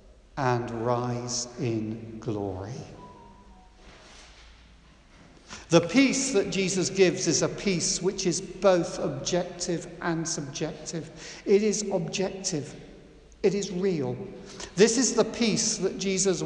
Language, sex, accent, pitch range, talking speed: English, male, British, 165-210 Hz, 110 wpm